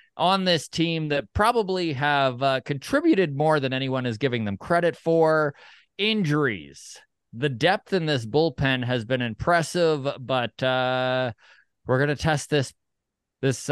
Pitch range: 130-165 Hz